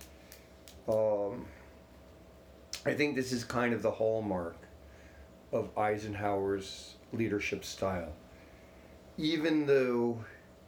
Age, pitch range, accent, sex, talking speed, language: 50-69, 80-115 Hz, American, male, 85 wpm, English